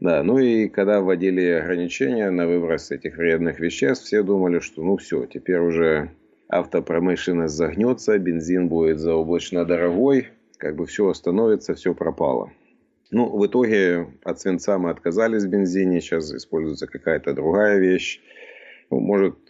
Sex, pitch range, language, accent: male, 80-100 Hz, Russian, native